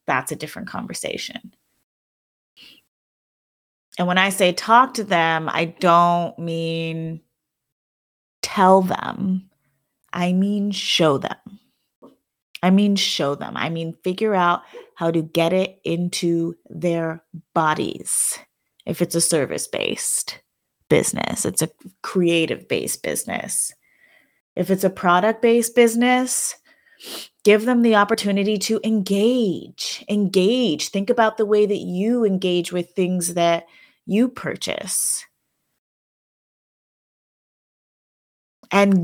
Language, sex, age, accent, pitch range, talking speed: English, female, 30-49, American, 170-210 Hz, 110 wpm